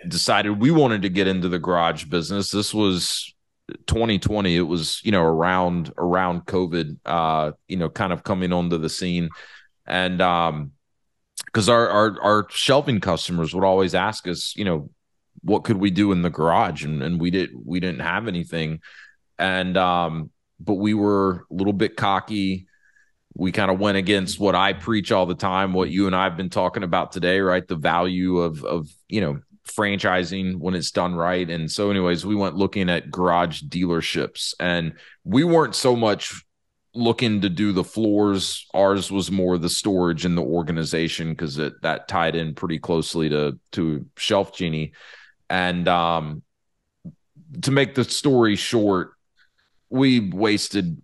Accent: American